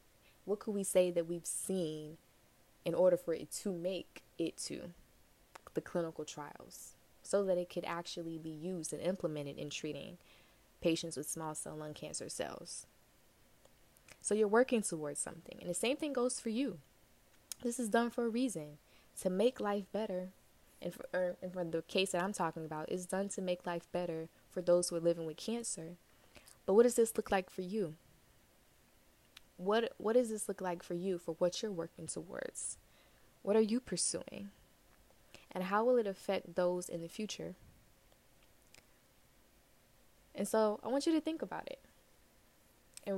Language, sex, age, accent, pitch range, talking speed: English, female, 20-39, American, 165-205 Hz, 175 wpm